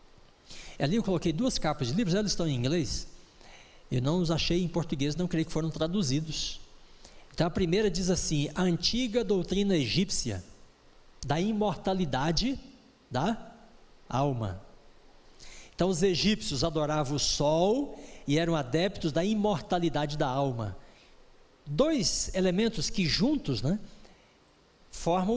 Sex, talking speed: male, 130 wpm